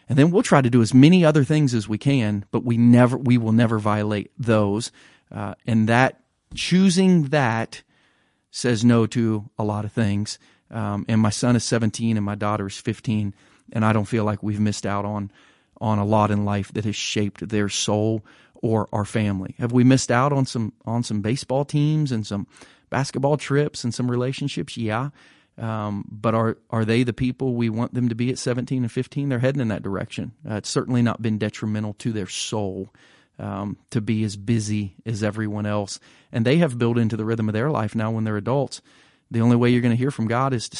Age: 40-59